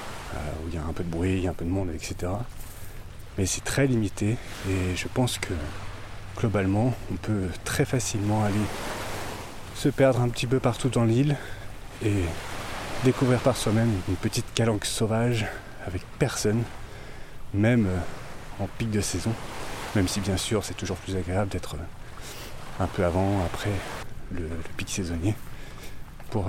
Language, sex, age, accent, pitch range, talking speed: French, male, 30-49, French, 95-120 Hz, 155 wpm